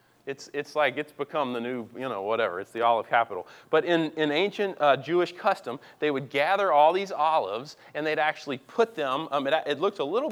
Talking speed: 220 wpm